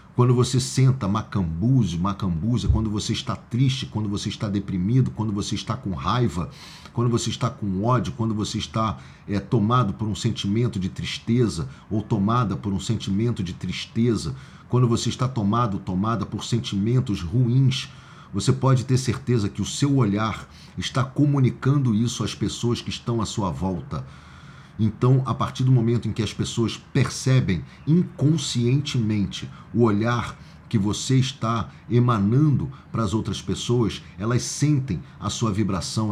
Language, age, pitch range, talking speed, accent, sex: Portuguese, 40-59, 100-125 Hz, 155 wpm, Brazilian, male